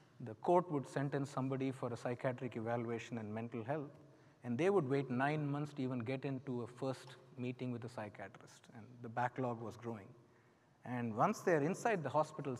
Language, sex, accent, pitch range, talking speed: English, male, Indian, 120-145 Hz, 185 wpm